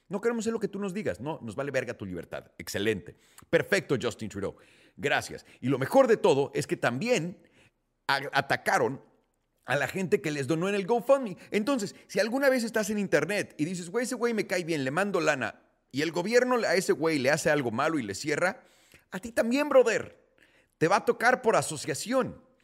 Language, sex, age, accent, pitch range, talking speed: Spanish, male, 40-59, Mexican, 135-205 Hz, 205 wpm